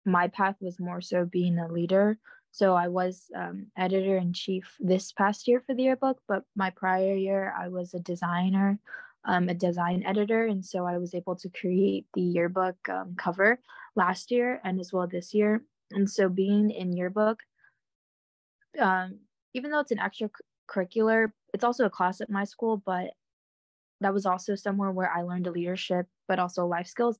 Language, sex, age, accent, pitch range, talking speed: English, female, 20-39, American, 180-205 Hz, 185 wpm